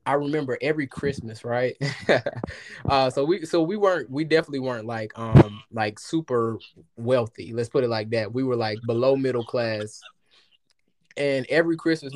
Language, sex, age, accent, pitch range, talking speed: English, male, 20-39, American, 115-140 Hz, 165 wpm